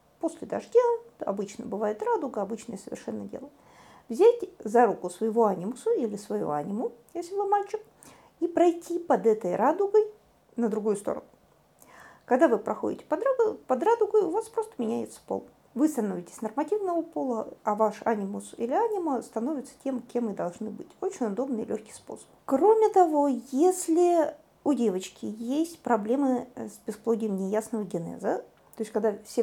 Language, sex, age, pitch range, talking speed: Russian, female, 50-69, 210-325 Hz, 145 wpm